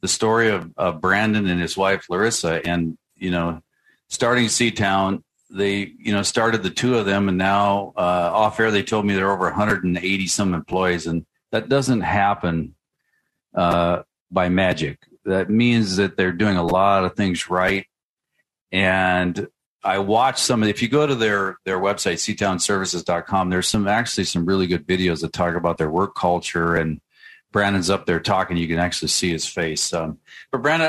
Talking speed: 180 wpm